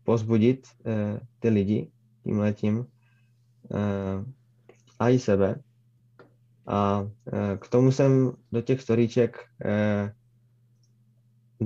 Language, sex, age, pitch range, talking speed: Czech, male, 20-39, 110-120 Hz, 100 wpm